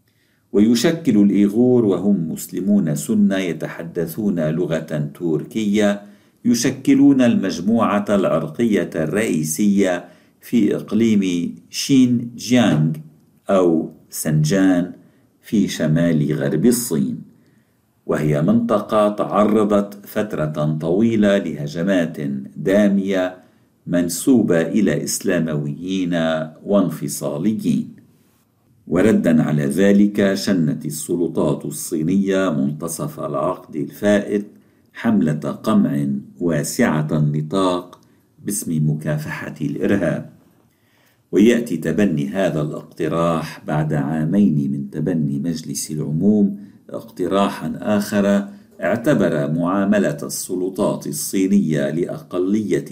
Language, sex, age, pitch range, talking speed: Arabic, male, 50-69, 80-105 Hz, 75 wpm